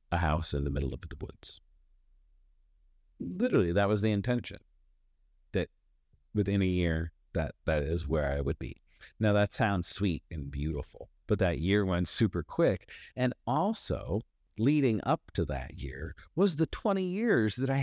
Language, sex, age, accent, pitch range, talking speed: English, male, 40-59, American, 80-115 Hz, 165 wpm